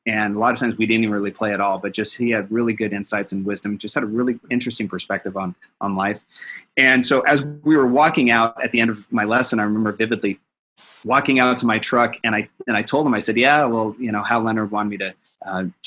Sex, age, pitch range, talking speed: male, 30-49, 105-130 Hz, 260 wpm